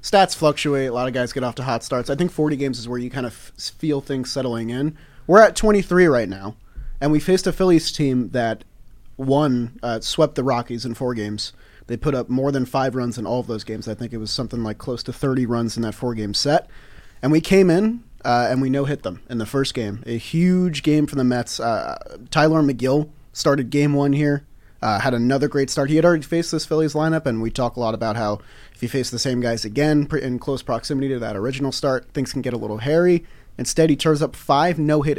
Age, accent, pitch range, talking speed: 30-49, American, 120-150 Hz, 240 wpm